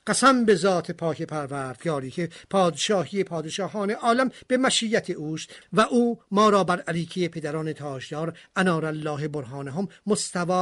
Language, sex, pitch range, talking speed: Persian, male, 155-205 Hz, 135 wpm